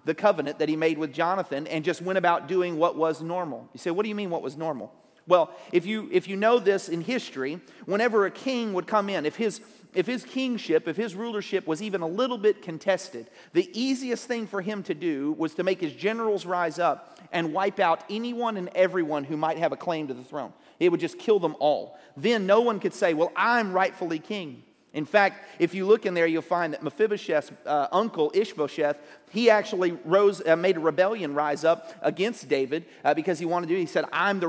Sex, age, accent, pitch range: male, 40-59, American, 160-215 Hz